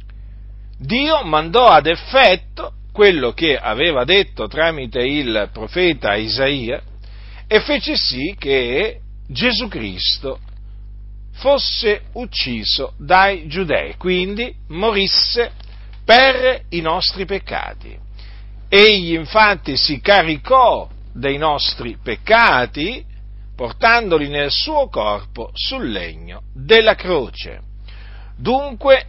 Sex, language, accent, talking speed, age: male, Italian, native, 90 wpm, 50-69